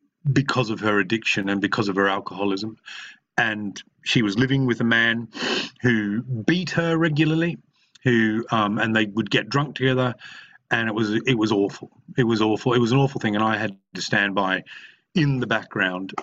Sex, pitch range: male, 105-140 Hz